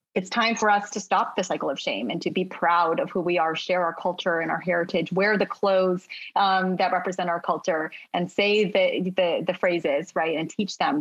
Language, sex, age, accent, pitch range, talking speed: English, female, 30-49, American, 185-225 Hz, 230 wpm